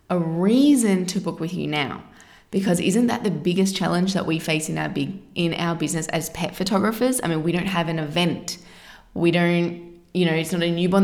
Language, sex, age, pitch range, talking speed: English, female, 20-39, 170-215 Hz, 215 wpm